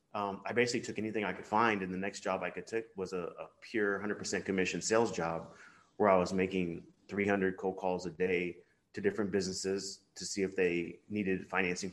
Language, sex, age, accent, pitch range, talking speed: English, male, 30-49, American, 90-105 Hz, 210 wpm